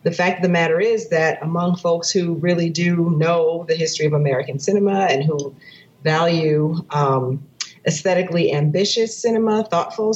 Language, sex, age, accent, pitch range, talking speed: English, female, 40-59, American, 150-180 Hz, 155 wpm